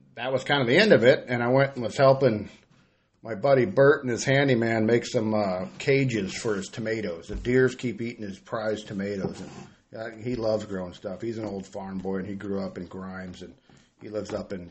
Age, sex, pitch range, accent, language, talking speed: 40-59, male, 105-130 Hz, American, English, 225 wpm